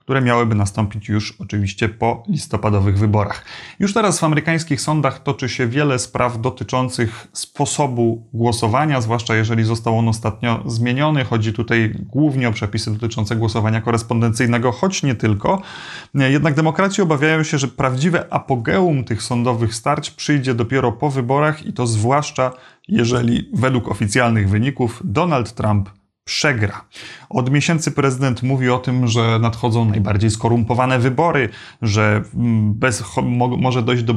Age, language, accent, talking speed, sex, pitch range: 30-49, Polish, native, 135 wpm, male, 115-135 Hz